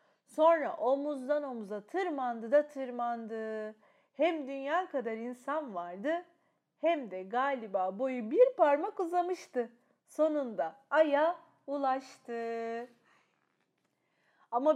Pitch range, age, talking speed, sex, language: 255-345 Hz, 40-59, 90 wpm, female, Turkish